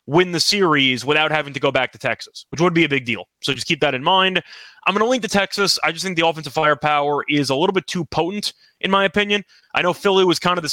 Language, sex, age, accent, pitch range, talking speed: English, male, 30-49, American, 145-185 Hz, 280 wpm